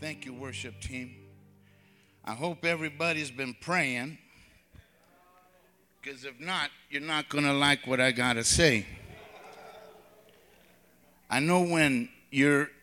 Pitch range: 125-150 Hz